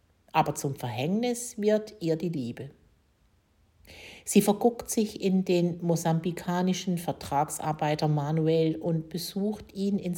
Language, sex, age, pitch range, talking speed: German, female, 50-69, 145-180 Hz, 110 wpm